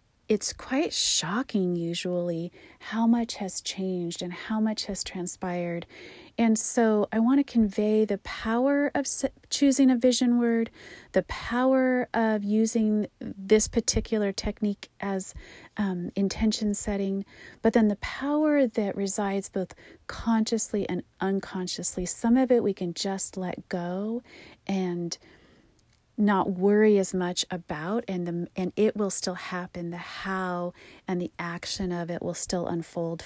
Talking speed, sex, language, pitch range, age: 140 wpm, female, English, 180-225 Hz, 40-59